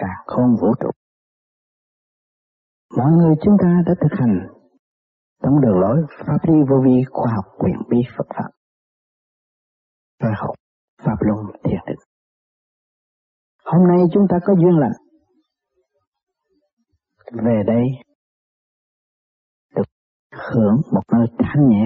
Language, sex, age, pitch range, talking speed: Vietnamese, male, 40-59, 115-185 Hz, 120 wpm